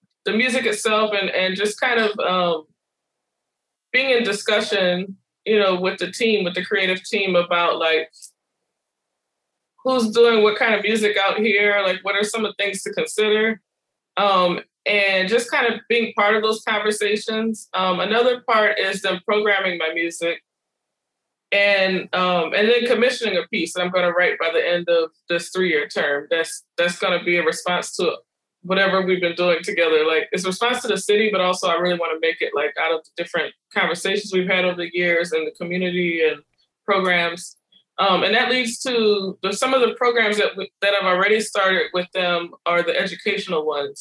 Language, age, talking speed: English, 20-39, 195 wpm